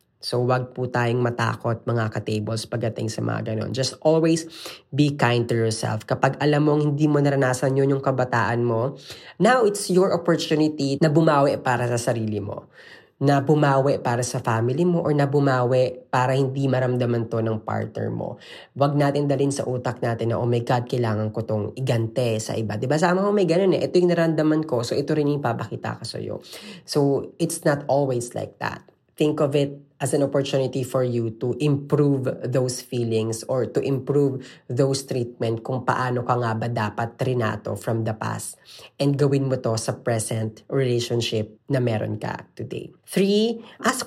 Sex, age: female, 20-39